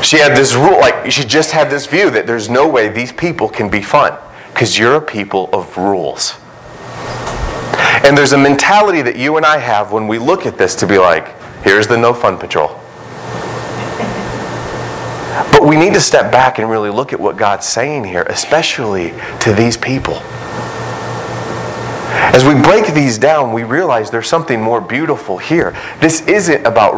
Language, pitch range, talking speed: English, 110-150 Hz, 180 wpm